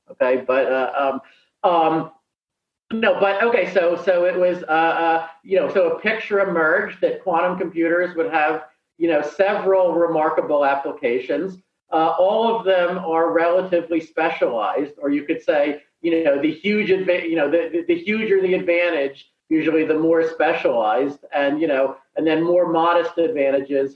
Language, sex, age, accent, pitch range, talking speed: English, male, 40-59, American, 155-195 Hz, 165 wpm